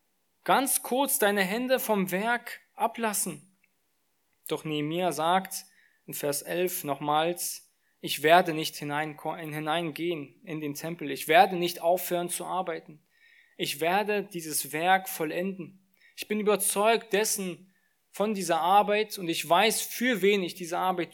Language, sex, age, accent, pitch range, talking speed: German, male, 20-39, German, 165-205 Hz, 135 wpm